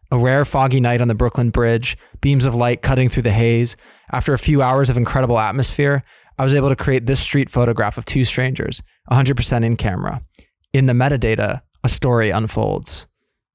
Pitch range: 115-130 Hz